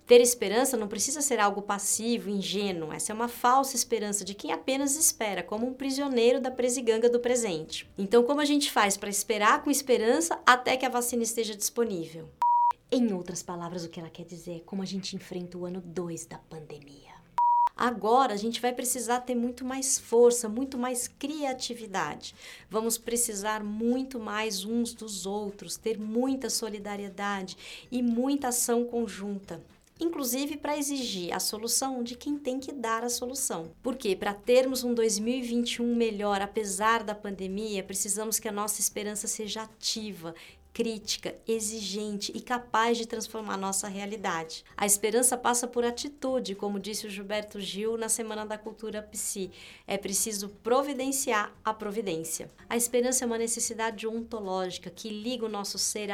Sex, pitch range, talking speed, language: female, 200-245 Hz, 160 wpm, Portuguese